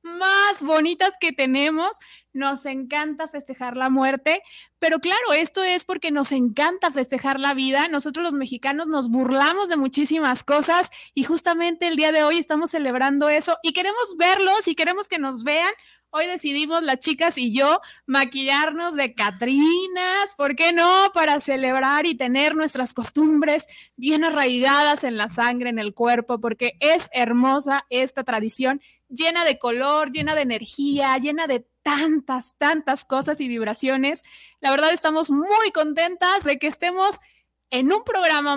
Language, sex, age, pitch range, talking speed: Spanish, female, 20-39, 260-325 Hz, 155 wpm